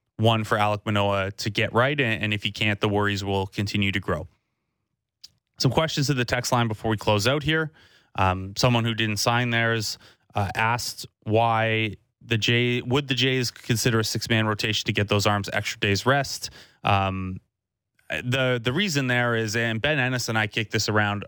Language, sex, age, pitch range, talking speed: English, male, 20-39, 110-135 Hz, 190 wpm